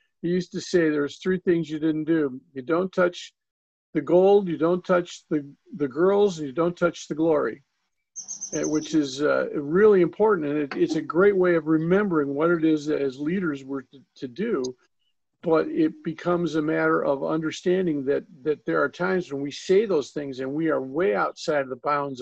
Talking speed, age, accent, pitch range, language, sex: 195 wpm, 50-69, American, 140-180 Hz, English, male